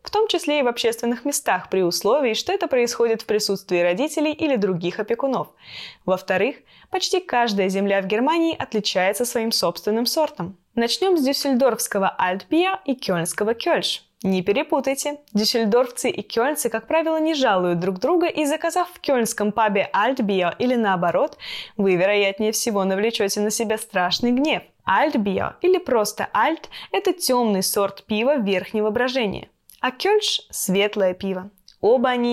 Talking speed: 145 wpm